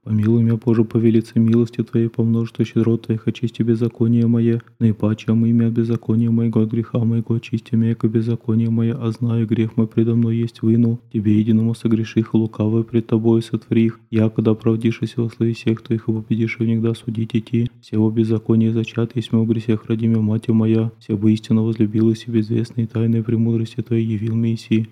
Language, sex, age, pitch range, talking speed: Russian, male, 20-39, 110-115 Hz, 180 wpm